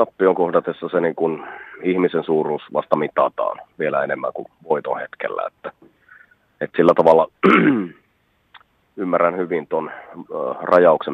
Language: Finnish